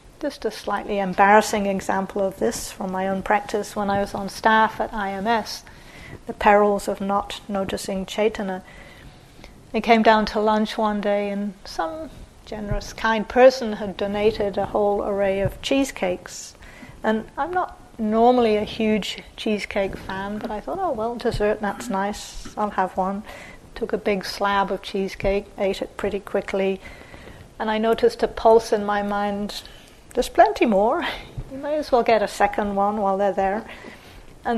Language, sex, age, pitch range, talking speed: English, female, 40-59, 200-230 Hz, 165 wpm